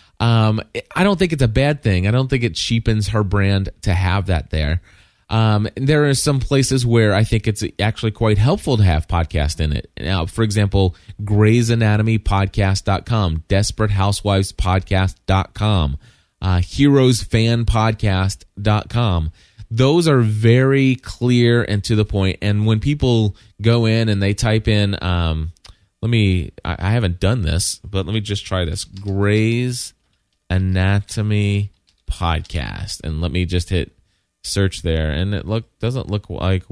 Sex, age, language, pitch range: male, 20-39, English, 90-110 Hz